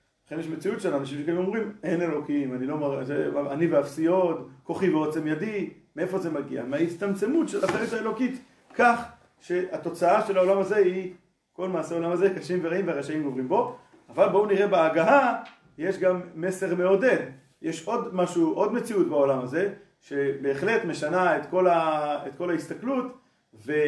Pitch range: 145-190 Hz